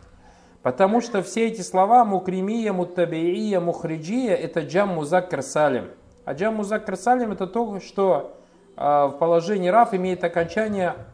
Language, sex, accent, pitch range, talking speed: Russian, male, native, 150-190 Hz, 120 wpm